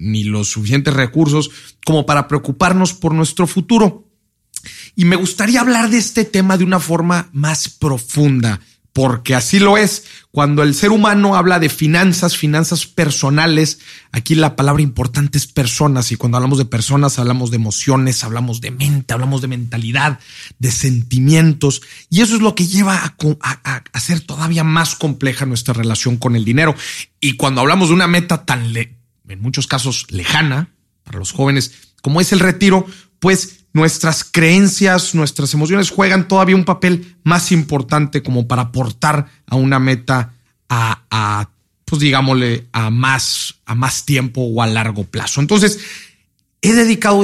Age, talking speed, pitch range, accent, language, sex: 40-59, 160 wpm, 125-170 Hz, Mexican, Spanish, male